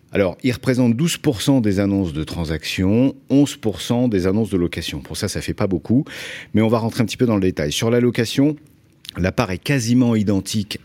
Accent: French